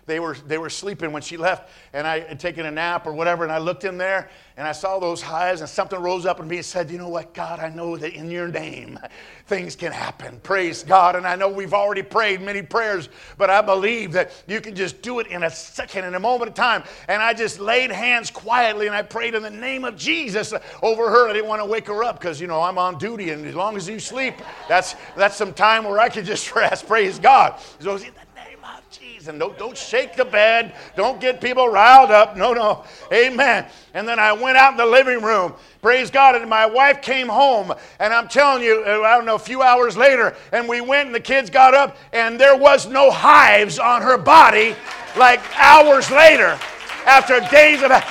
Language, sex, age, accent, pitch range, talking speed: English, male, 50-69, American, 185-270 Hz, 230 wpm